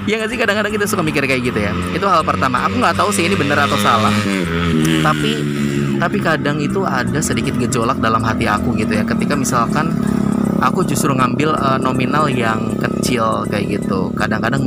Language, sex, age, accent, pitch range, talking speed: Indonesian, male, 20-39, native, 105-135 Hz, 180 wpm